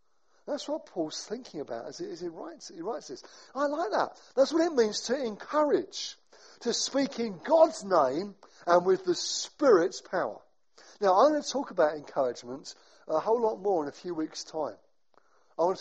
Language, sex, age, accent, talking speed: English, male, 50-69, British, 180 wpm